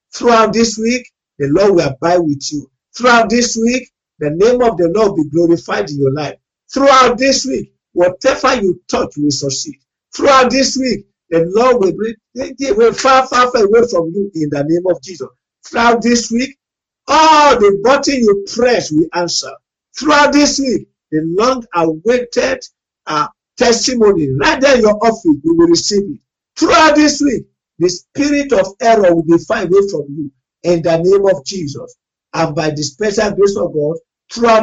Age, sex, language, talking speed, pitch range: 50-69, male, English, 170 wpm, 160-245 Hz